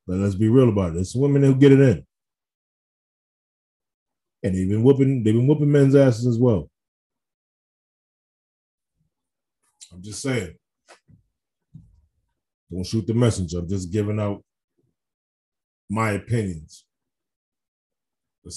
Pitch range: 90-115 Hz